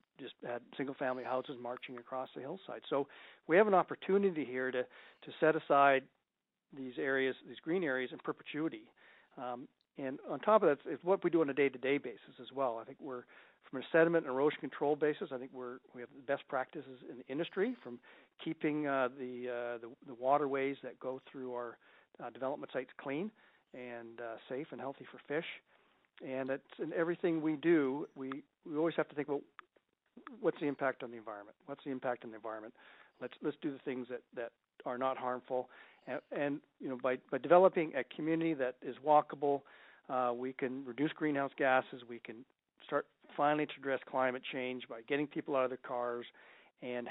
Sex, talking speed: male, 195 wpm